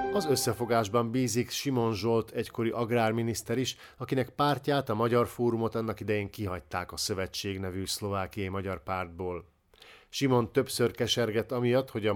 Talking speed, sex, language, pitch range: 140 wpm, male, Hungarian, 100-120 Hz